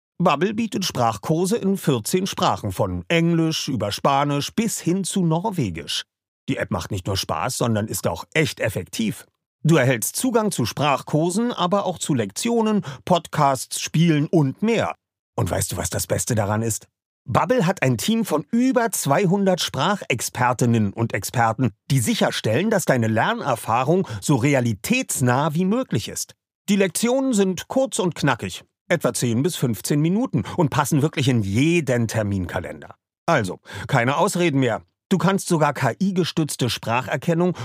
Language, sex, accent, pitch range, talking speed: German, male, German, 120-180 Hz, 145 wpm